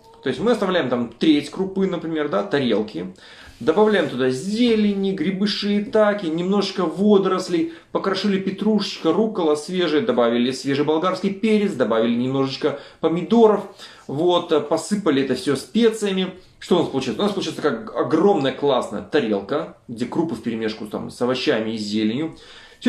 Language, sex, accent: Russian, male, native